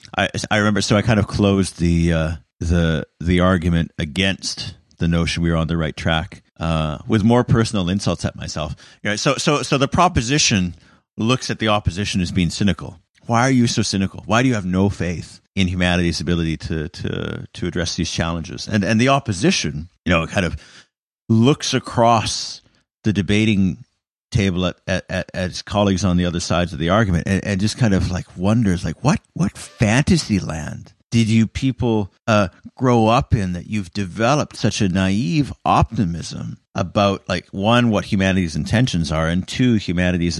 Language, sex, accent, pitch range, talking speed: English, male, American, 85-110 Hz, 185 wpm